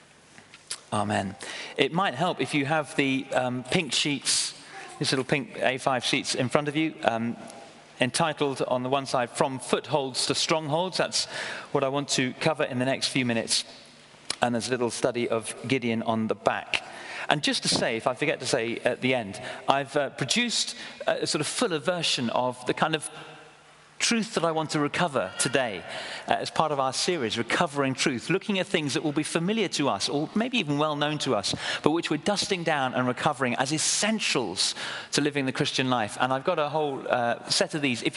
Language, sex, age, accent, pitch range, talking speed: English, male, 40-59, British, 130-175 Hz, 205 wpm